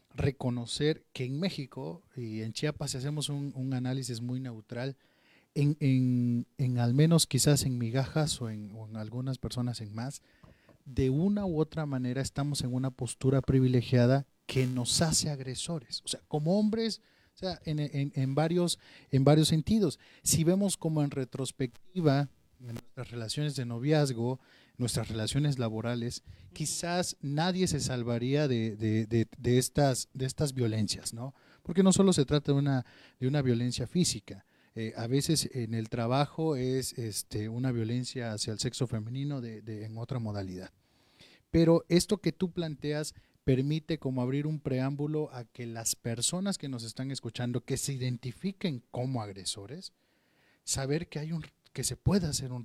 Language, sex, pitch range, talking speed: Spanish, male, 120-150 Hz, 165 wpm